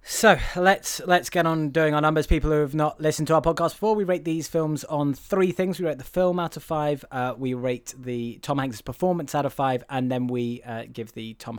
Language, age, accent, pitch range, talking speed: English, 20-39, British, 120-155 Hz, 250 wpm